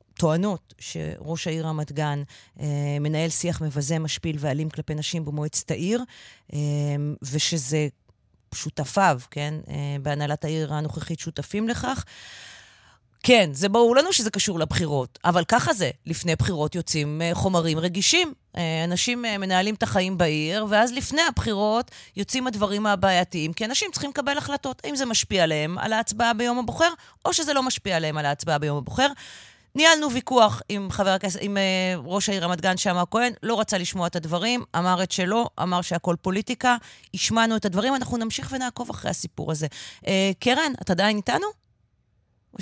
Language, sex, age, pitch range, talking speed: Hebrew, female, 30-49, 155-215 Hz, 155 wpm